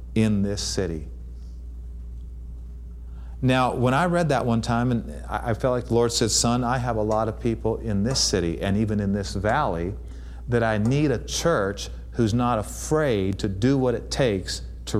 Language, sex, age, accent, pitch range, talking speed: English, male, 40-59, American, 90-135 Hz, 185 wpm